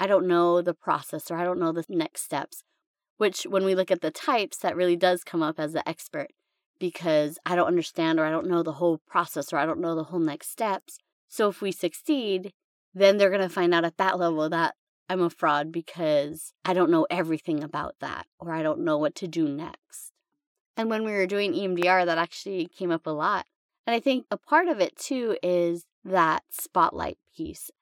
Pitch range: 165-195 Hz